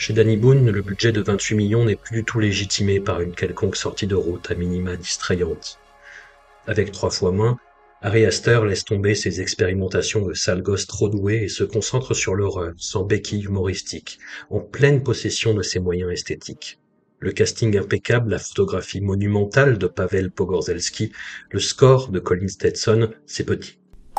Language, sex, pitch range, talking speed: French, male, 90-110 Hz, 170 wpm